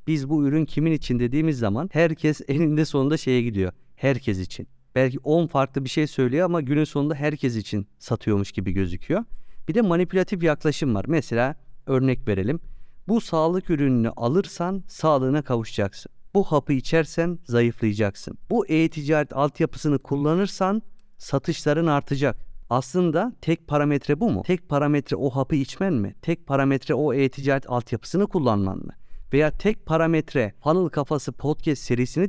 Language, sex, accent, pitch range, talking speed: Turkish, male, native, 125-165 Hz, 145 wpm